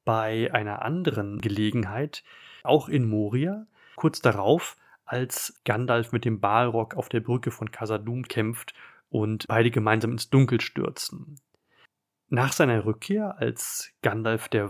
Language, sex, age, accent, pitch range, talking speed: German, male, 30-49, German, 110-135 Hz, 130 wpm